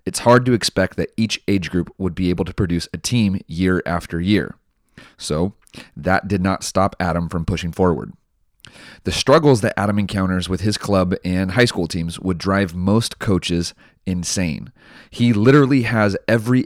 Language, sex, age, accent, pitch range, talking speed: English, male, 30-49, American, 90-110 Hz, 175 wpm